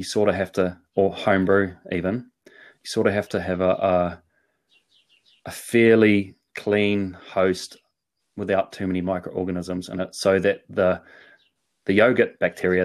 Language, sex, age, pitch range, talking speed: English, male, 30-49, 95-105 Hz, 145 wpm